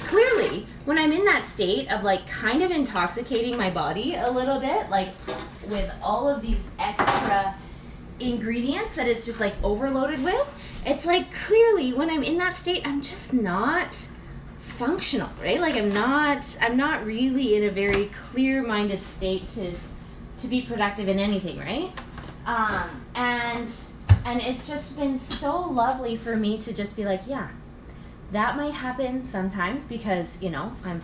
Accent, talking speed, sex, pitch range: American, 160 wpm, female, 205-280 Hz